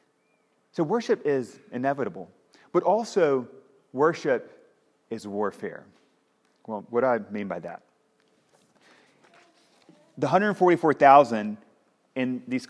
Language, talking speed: English, 95 wpm